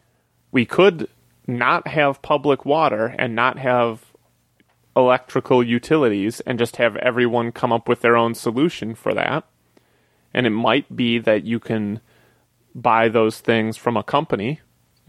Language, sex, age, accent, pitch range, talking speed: English, male, 30-49, American, 115-150 Hz, 145 wpm